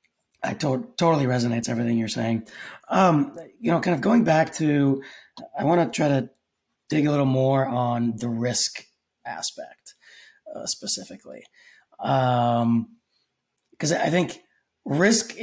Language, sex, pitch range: English, male, 120-150 Hz